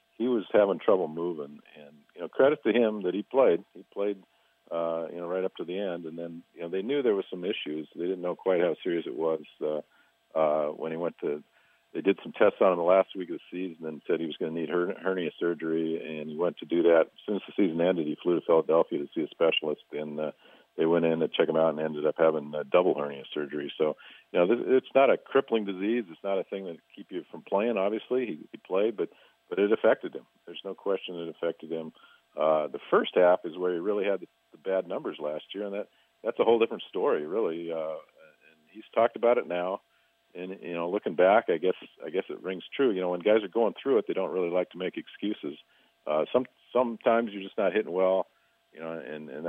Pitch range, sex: 80-110 Hz, male